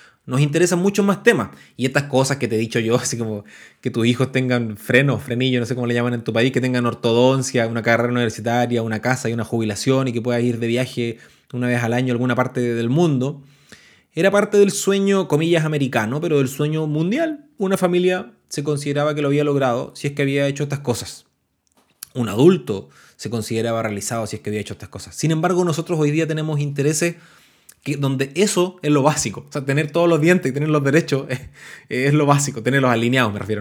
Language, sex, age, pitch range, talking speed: Spanish, male, 20-39, 120-165 Hz, 220 wpm